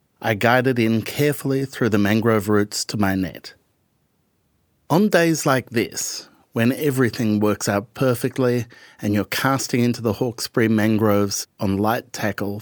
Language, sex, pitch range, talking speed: English, male, 100-125 Hz, 145 wpm